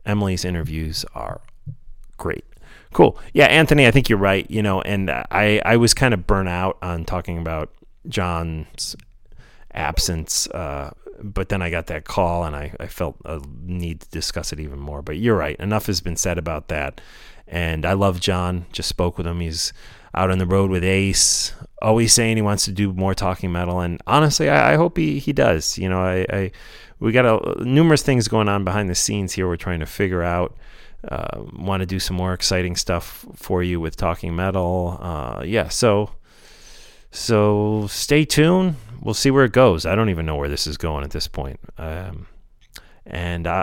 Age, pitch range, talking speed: 30-49, 80-105 Hz, 195 wpm